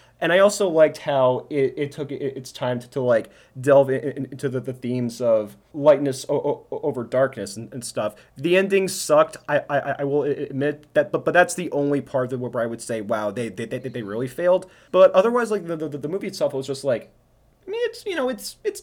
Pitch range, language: 130-170 Hz, English